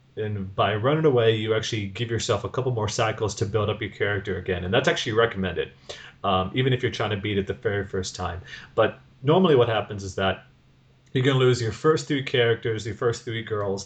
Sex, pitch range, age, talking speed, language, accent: male, 100-120 Hz, 30-49, 225 wpm, English, American